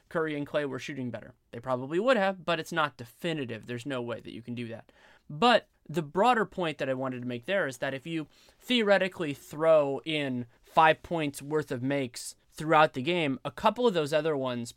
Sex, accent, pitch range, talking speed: male, American, 125-160 Hz, 215 wpm